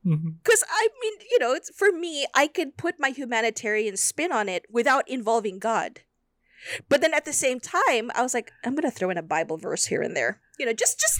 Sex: female